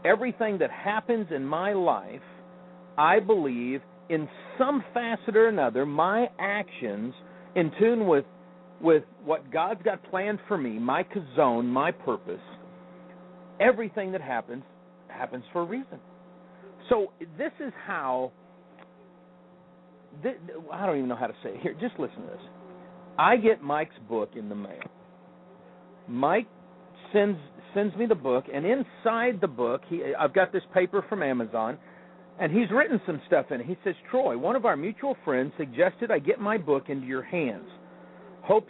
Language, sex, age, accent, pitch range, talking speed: English, male, 50-69, American, 135-220 Hz, 160 wpm